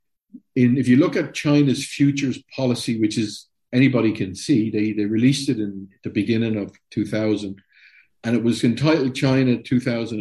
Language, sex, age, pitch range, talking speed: English, male, 50-69, 110-140 Hz, 175 wpm